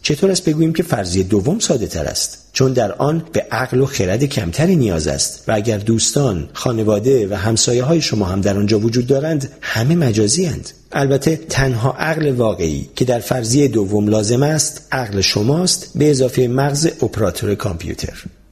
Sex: male